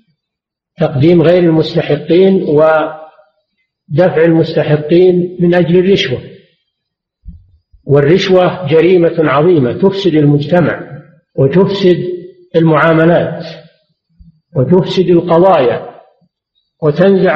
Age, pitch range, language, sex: 50-69, 155-180 Hz, Arabic, male